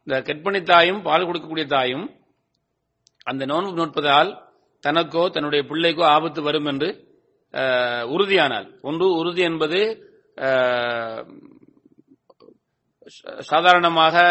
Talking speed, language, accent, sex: 90 wpm, English, Indian, male